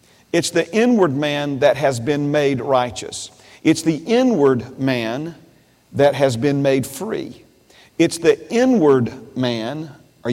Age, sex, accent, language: 40-59, male, American, English